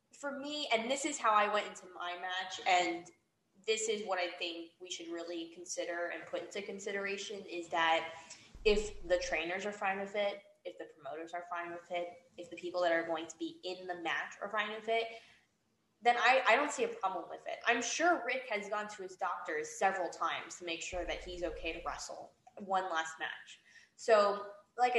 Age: 10-29